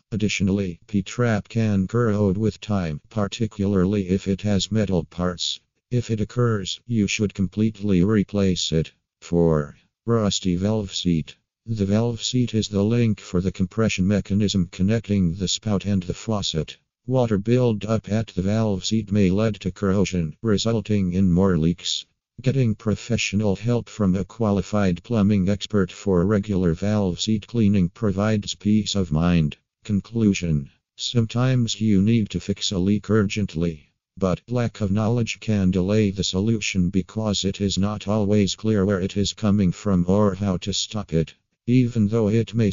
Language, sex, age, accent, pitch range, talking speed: English, male, 50-69, American, 95-110 Hz, 150 wpm